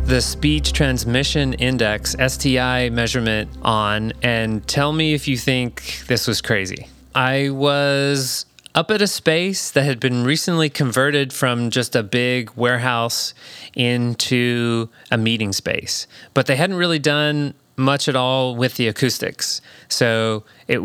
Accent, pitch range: American, 115-145 Hz